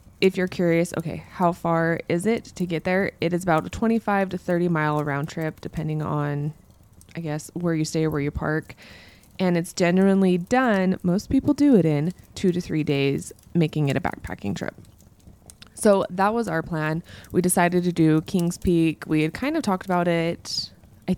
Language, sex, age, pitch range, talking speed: English, female, 20-39, 155-195 Hz, 195 wpm